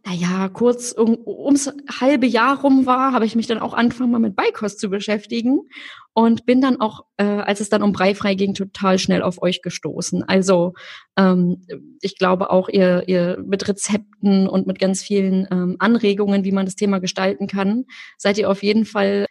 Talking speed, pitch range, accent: 195 wpm, 200-245 Hz, German